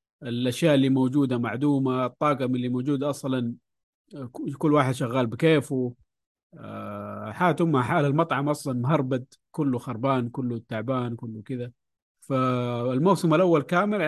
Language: Arabic